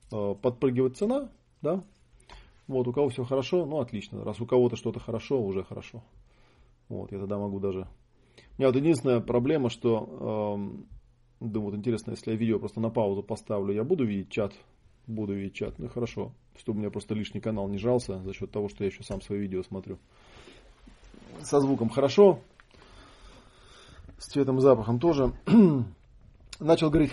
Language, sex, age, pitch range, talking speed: Russian, male, 40-59, 105-130 Hz, 170 wpm